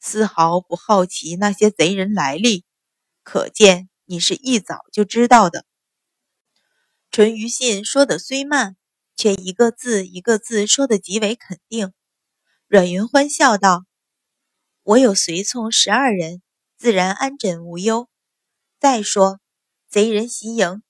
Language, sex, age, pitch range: Chinese, female, 20-39, 185-235 Hz